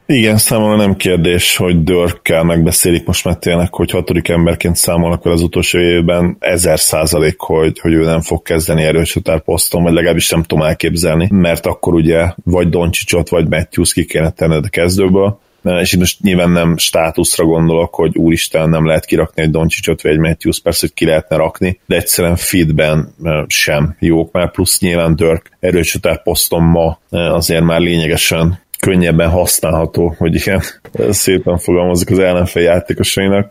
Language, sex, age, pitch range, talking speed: Hungarian, male, 30-49, 80-90 Hz, 160 wpm